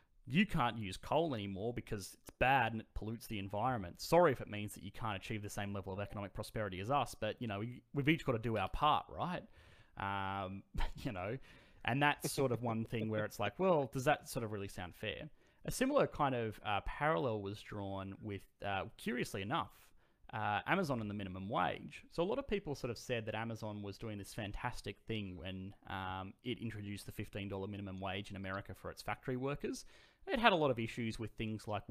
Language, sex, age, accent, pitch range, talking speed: English, male, 30-49, Australian, 100-115 Hz, 220 wpm